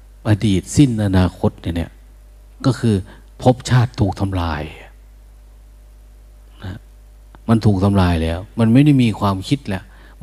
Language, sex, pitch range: Thai, male, 85-115 Hz